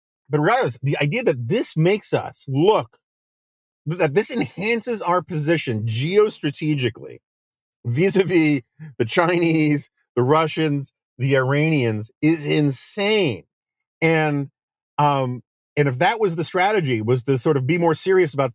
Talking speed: 130 wpm